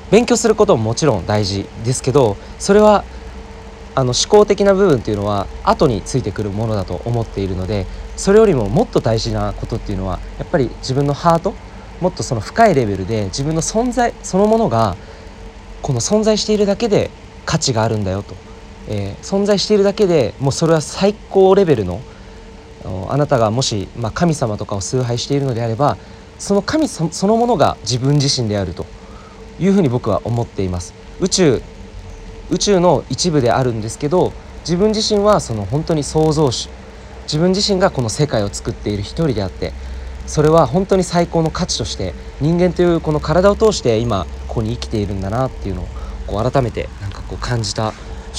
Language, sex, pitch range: Japanese, male, 100-165 Hz